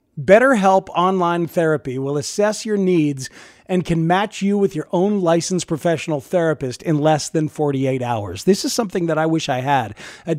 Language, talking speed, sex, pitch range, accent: English, 180 wpm, male, 155-200 Hz, American